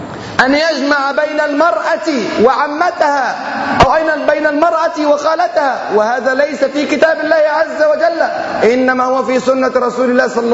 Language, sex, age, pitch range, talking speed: Arabic, male, 30-49, 265-315 Hz, 130 wpm